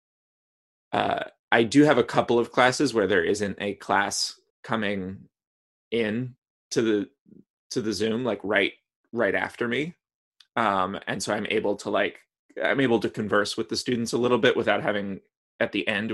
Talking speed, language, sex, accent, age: 175 wpm, English, male, American, 20-39